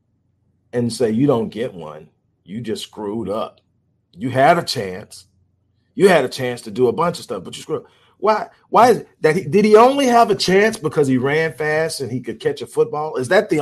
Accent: American